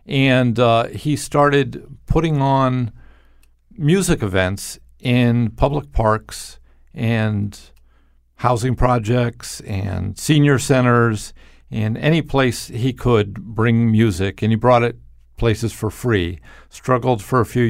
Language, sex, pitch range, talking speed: English, male, 100-120 Hz, 120 wpm